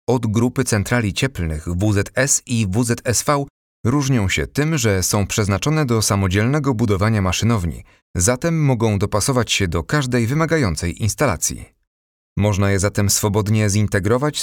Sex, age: male, 30-49